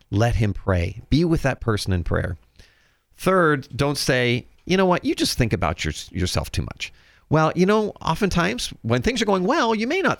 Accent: American